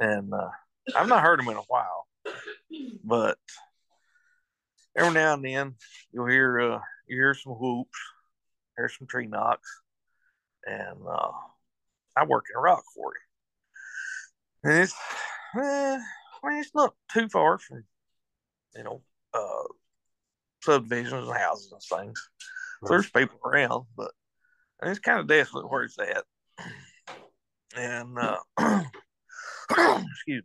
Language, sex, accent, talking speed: English, male, American, 130 wpm